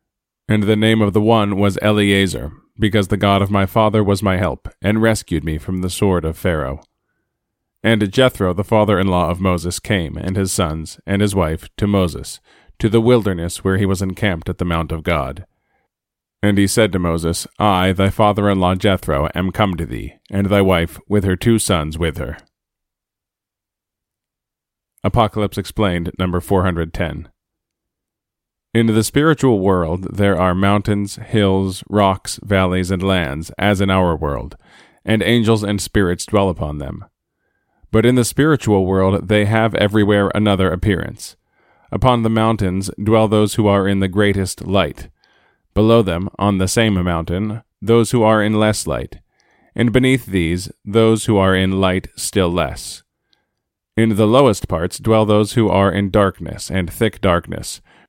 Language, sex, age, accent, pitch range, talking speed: English, male, 40-59, American, 90-105 Hz, 160 wpm